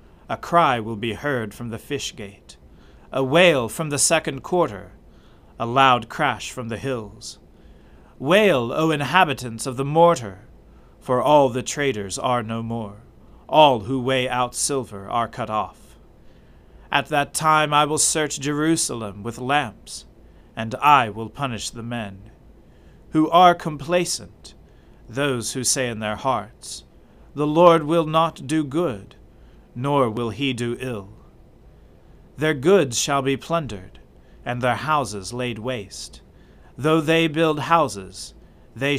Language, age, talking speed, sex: English, 40-59, 140 wpm, male